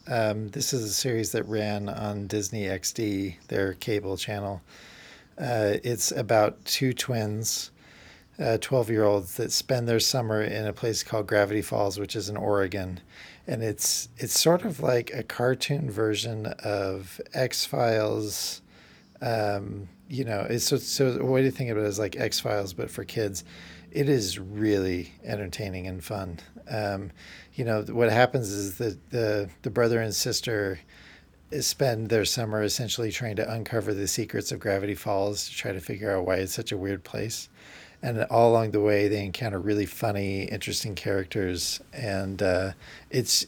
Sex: male